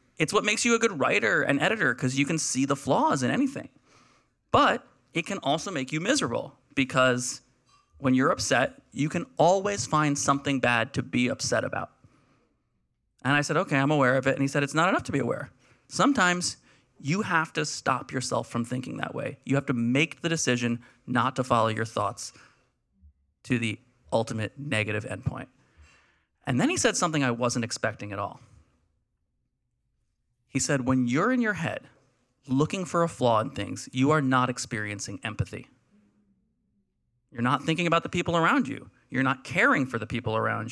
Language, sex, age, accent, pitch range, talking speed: English, male, 30-49, American, 120-145 Hz, 185 wpm